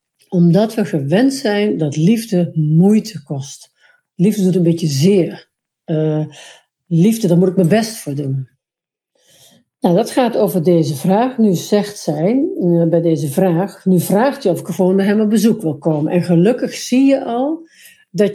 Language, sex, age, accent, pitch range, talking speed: Dutch, female, 60-79, Dutch, 165-215 Hz, 170 wpm